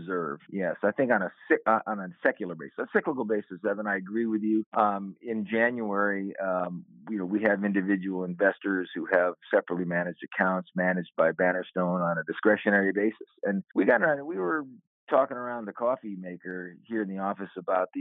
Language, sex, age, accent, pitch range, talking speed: English, male, 50-69, American, 90-110 Hz, 190 wpm